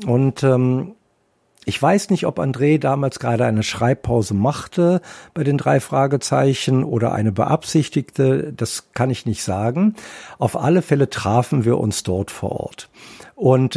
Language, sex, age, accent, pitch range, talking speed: German, male, 50-69, German, 105-140 Hz, 150 wpm